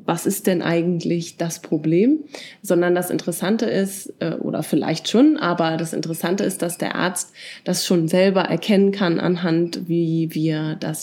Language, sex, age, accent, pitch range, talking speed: German, female, 20-39, German, 170-200 Hz, 160 wpm